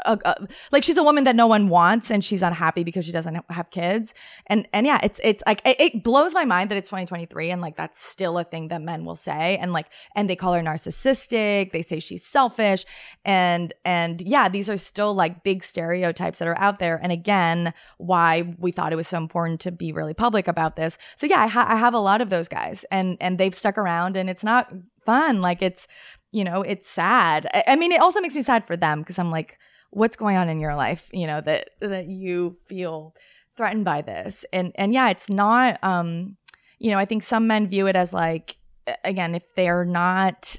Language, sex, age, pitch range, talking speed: English, female, 20-39, 175-235 Hz, 230 wpm